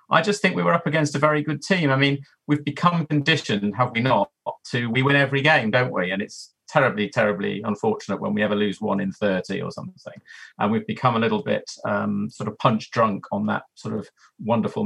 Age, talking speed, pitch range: 40-59, 225 wpm, 105-135 Hz